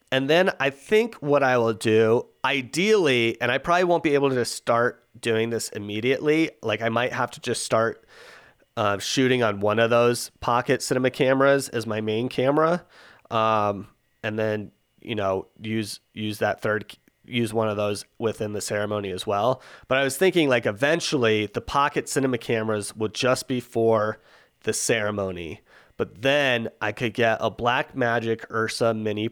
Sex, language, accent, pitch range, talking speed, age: male, English, American, 105-130 Hz, 170 wpm, 30-49